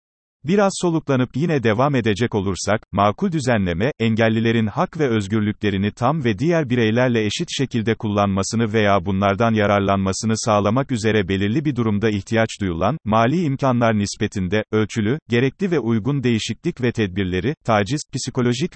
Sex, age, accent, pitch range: male, 40-59, native, 110-145 Hz